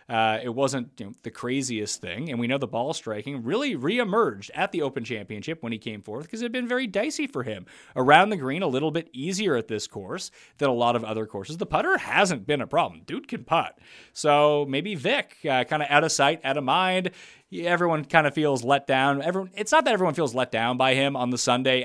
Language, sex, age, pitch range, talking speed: English, male, 30-49, 120-180 Hz, 240 wpm